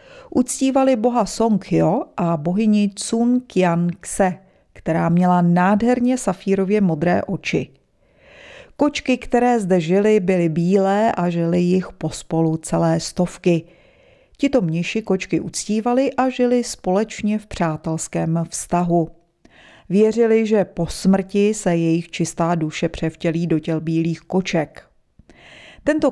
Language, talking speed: Czech, 115 wpm